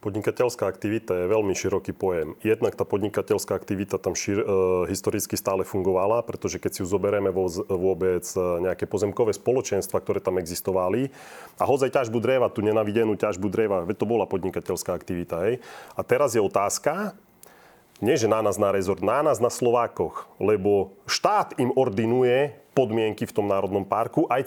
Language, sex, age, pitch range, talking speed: Slovak, male, 30-49, 100-130 Hz, 155 wpm